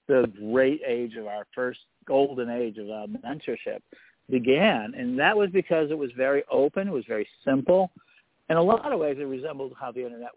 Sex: male